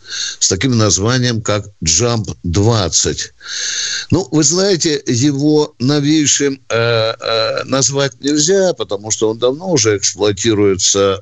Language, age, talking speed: Russian, 60-79, 110 wpm